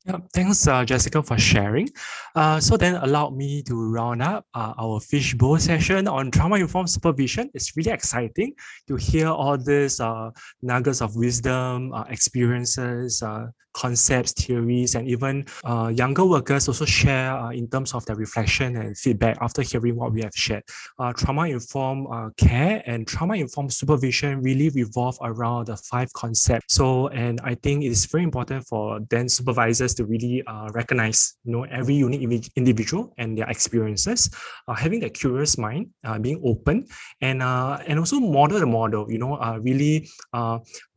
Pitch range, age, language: 115-140 Hz, 20-39, English